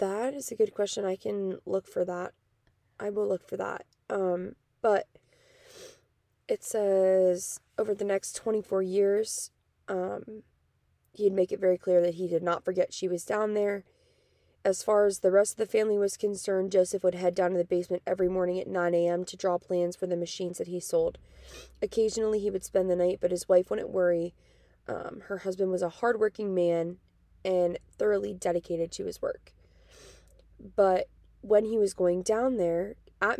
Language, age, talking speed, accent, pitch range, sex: English, 20-39, 185 wpm, American, 180-215 Hz, female